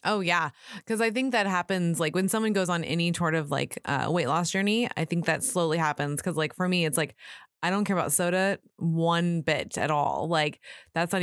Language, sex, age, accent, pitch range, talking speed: English, female, 20-39, American, 165-205 Hz, 230 wpm